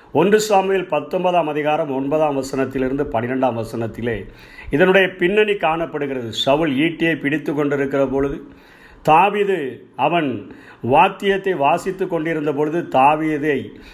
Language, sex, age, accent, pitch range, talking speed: Tamil, male, 50-69, native, 140-185 Hz, 95 wpm